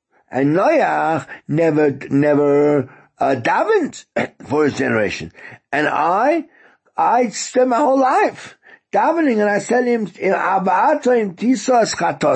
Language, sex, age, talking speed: English, male, 60-79, 100 wpm